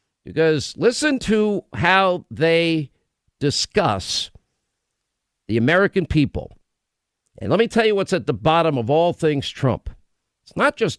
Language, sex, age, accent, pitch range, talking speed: English, male, 50-69, American, 125-180 Hz, 135 wpm